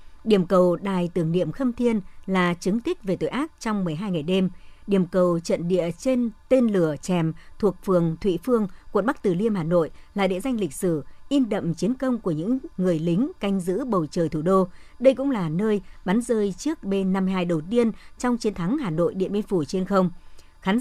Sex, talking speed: male, 215 wpm